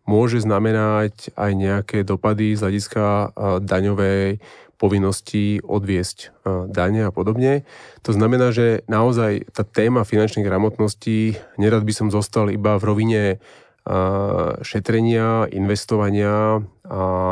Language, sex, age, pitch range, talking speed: Slovak, male, 30-49, 100-110 Hz, 105 wpm